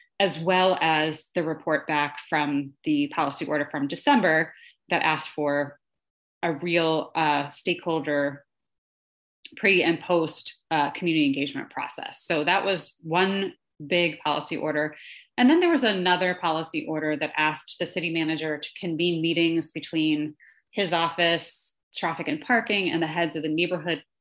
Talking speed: 150 wpm